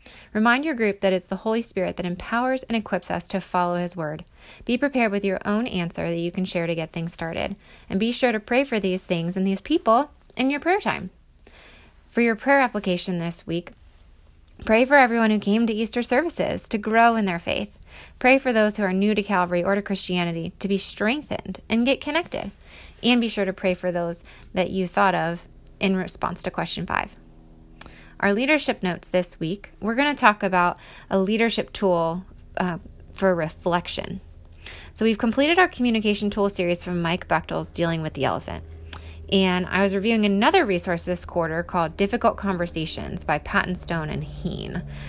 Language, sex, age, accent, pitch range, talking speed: English, female, 20-39, American, 170-220 Hz, 190 wpm